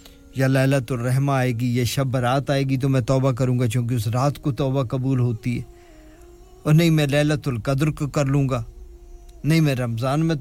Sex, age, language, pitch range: male, 50-69, English, 115-145 Hz